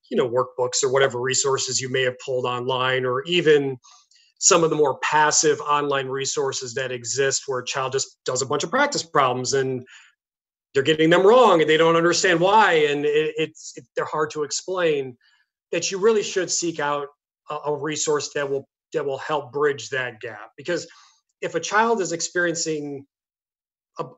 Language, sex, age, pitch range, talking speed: English, male, 30-49, 135-165 Hz, 185 wpm